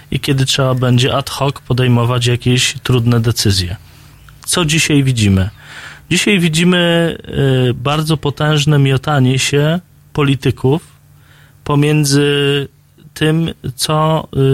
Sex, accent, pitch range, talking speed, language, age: male, native, 120-145 Hz, 90 wpm, Polish, 20-39